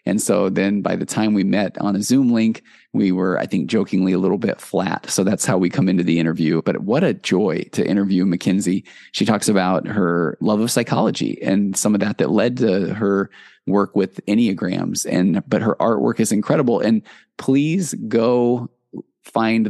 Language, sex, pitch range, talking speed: English, male, 100-115 Hz, 195 wpm